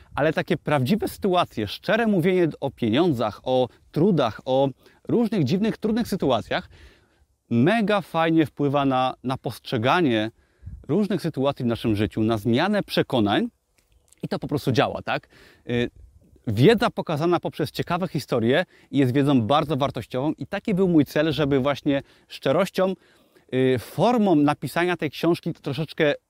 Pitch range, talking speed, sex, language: 130-175 Hz, 130 wpm, male, Polish